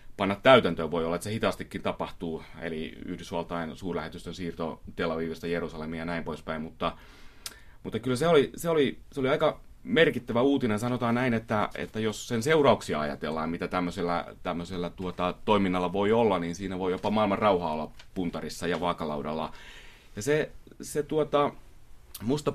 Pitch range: 90-120 Hz